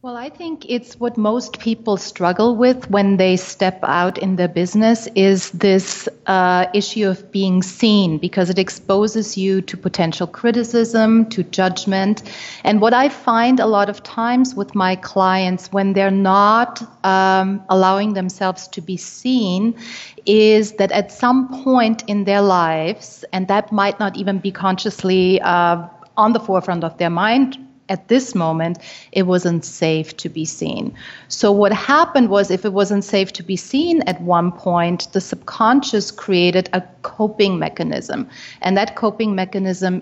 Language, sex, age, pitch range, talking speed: English, female, 30-49, 180-215 Hz, 160 wpm